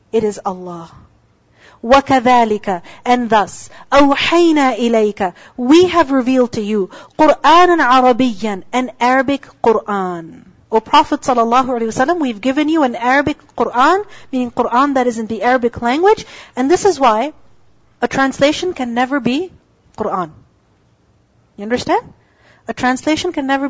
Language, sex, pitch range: English, female, 235-295 Hz